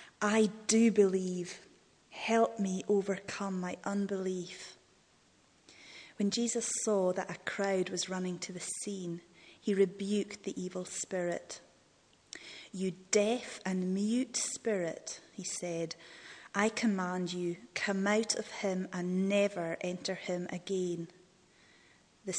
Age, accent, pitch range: 30-49, British, 180-205 Hz